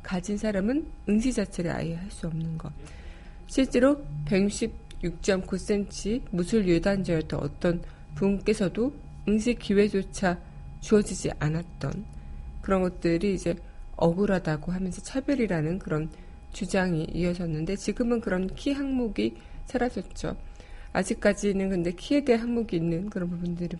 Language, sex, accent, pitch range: Korean, female, native, 170-210 Hz